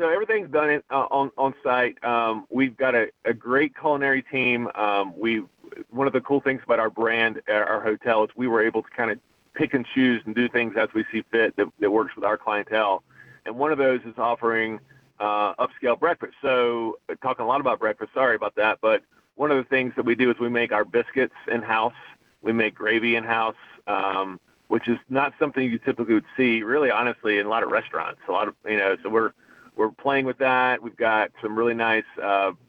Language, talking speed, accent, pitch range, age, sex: English, 220 wpm, American, 110-130 Hz, 40-59, male